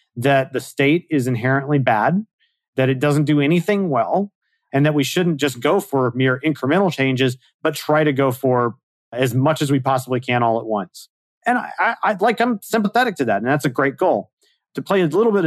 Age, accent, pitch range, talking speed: 30-49, American, 130-165 Hz, 215 wpm